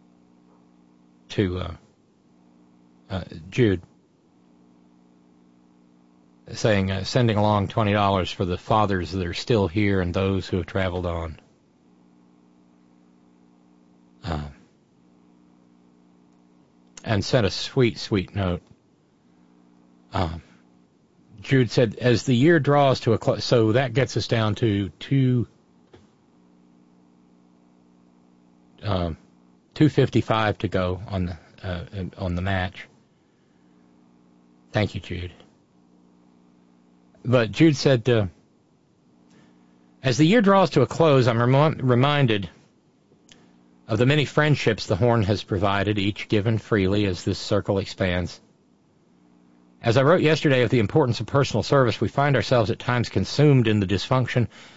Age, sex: 50-69, male